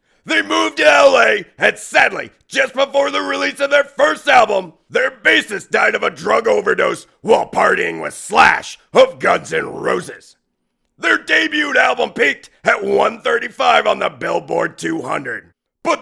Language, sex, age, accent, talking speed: English, male, 40-59, American, 150 wpm